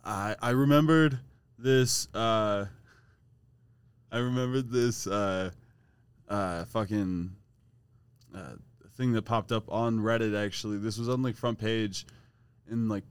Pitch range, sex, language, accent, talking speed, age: 110-130 Hz, male, English, American, 125 wpm, 20-39